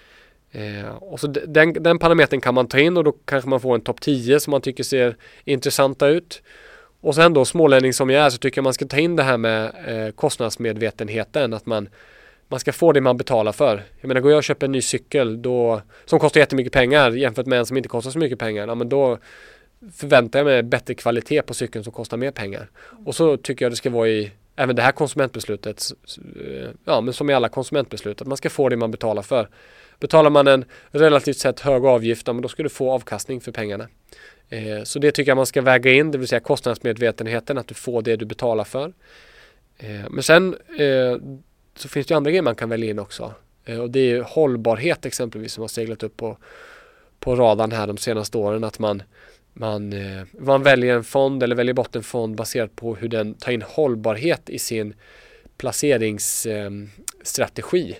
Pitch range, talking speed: 115-145 Hz, 215 wpm